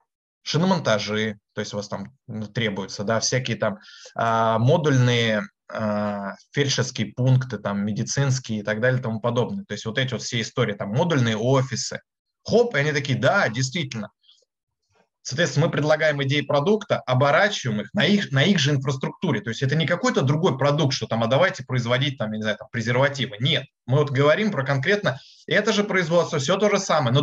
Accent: native